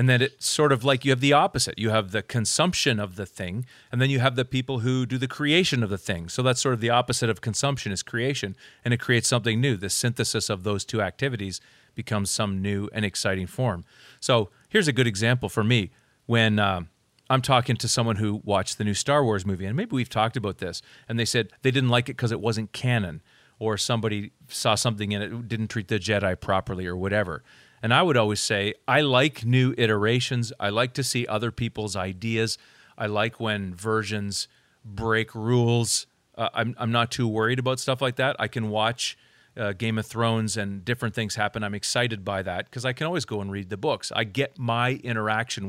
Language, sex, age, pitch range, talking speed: English, male, 40-59, 105-125 Hz, 220 wpm